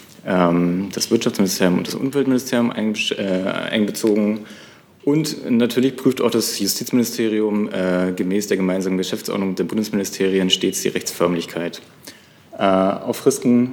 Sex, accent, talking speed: male, German, 100 wpm